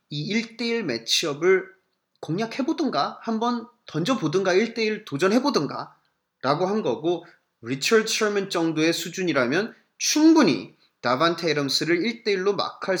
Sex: male